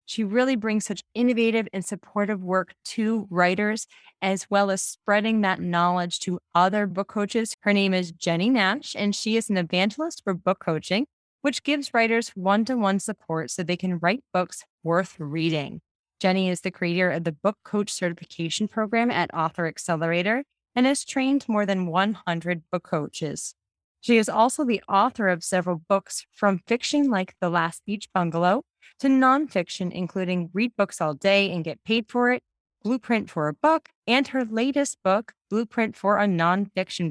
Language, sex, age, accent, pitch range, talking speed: English, female, 20-39, American, 175-220 Hz, 170 wpm